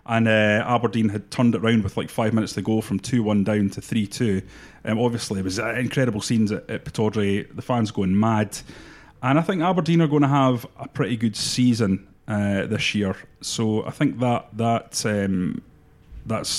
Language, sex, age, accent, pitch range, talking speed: English, male, 30-49, British, 105-130 Hz, 195 wpm